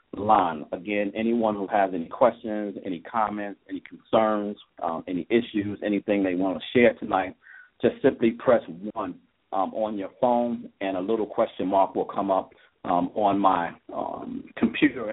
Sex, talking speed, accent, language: male, 160 wpm, American, English